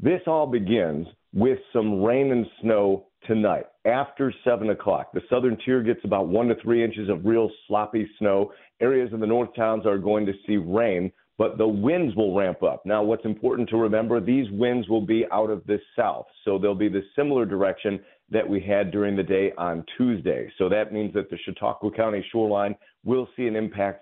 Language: English